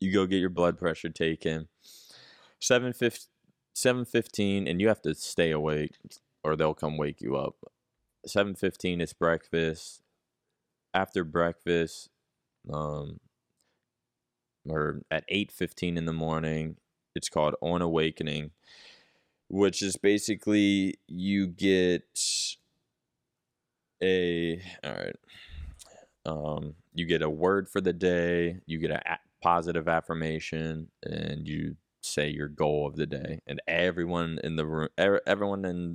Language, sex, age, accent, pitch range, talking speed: English, male, 20-39, American, 75-90 Hz, 120 wpm